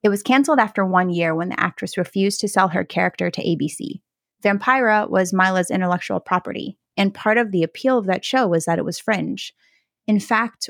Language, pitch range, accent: English, 175-220 Hz, American